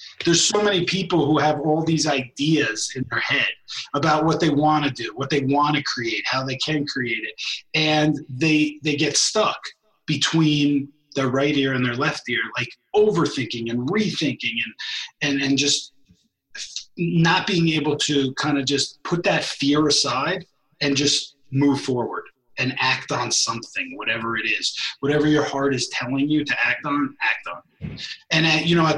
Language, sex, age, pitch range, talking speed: English, male, 30-49, 135-155 Hz, 180 wpm